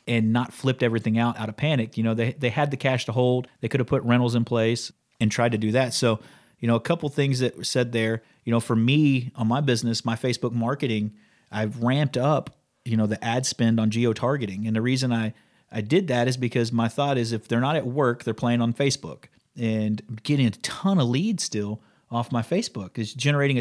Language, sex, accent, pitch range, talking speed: English, male, American, 115-135 Hz, 235 wpm